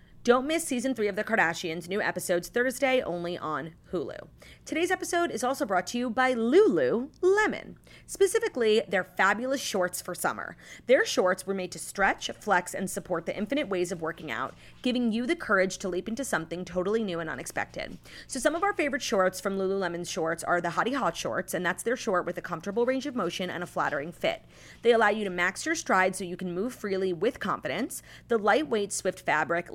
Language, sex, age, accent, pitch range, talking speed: English, female, 30-49, American, 180-250 Hz, 205 wpm